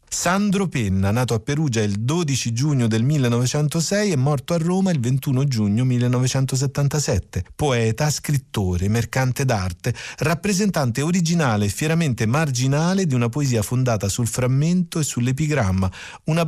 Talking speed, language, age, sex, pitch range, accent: 130 wpm, Italian, 40-59, male, 110-150 Hz, native